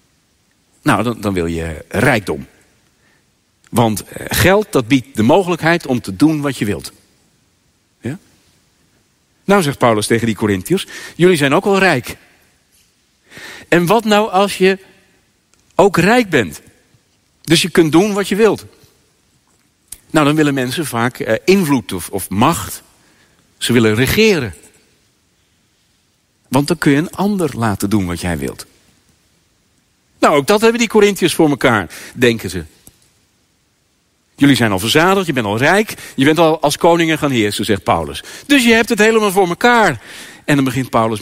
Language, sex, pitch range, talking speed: Dutch, male, 110-180 Hz, 150 wpm